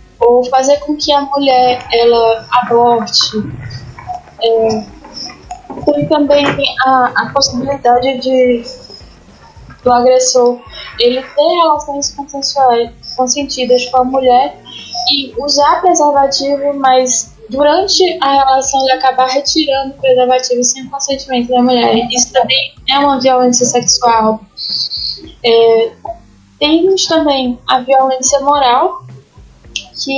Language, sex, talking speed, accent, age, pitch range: Portuguese, female, 105 wpm, Brazilian, 10-29, 245-280 Hz